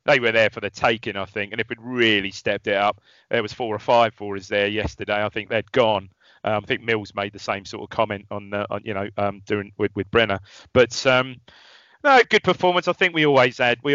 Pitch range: 110-150 Hz